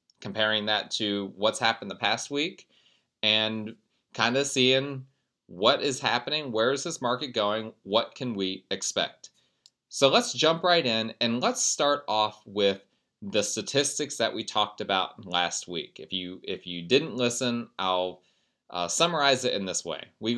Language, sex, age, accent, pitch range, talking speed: English, male, 30-49, American, 100-130 Hz, 165 wpm